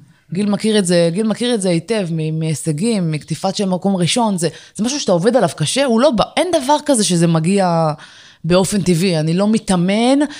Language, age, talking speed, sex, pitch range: Hebrew, 20-39, 195 wpm, female, 165-215 Hz